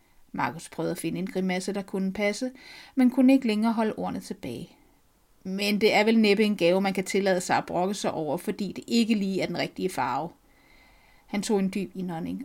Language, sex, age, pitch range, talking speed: Danish, female, 30-49, 195-230 Hz, 210 wpm